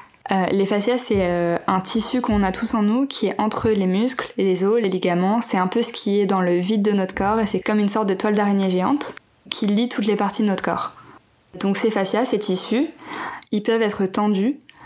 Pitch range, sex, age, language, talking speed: 190-220 Hz, female, 20-39, French, 240 wpm